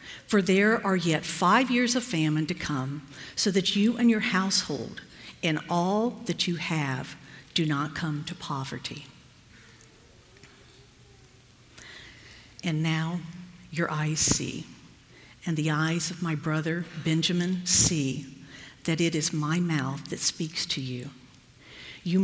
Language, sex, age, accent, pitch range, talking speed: English, female, 50-69, American, 135-175 Hz, 130 wpm